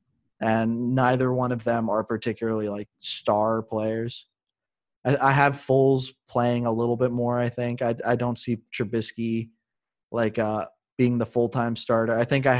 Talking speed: 160 wpm